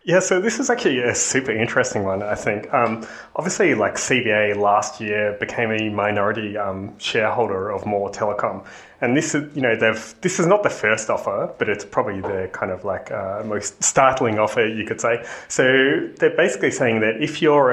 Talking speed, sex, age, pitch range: 195 wpm, male, 30-49, 100-120 Hz